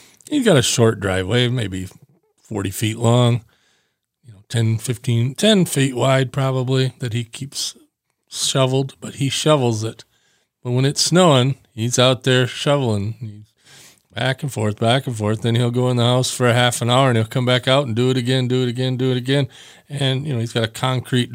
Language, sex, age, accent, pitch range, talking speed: English, male, 40-59, American, 115-140 Hz, 195 wpm